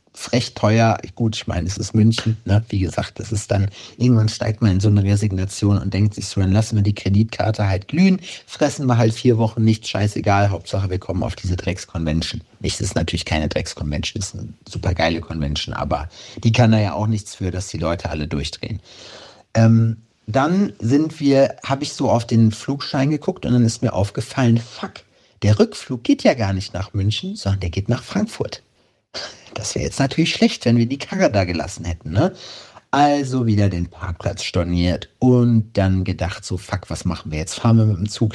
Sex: male